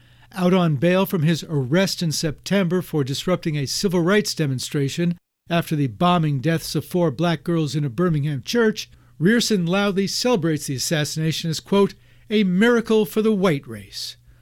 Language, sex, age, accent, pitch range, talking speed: English, male, 60-79, American, 135-190 Hz, 160 wpm